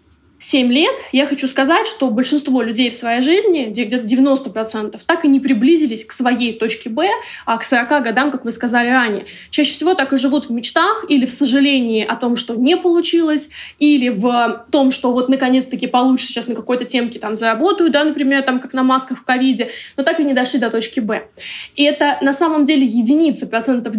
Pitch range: 245-295 Hz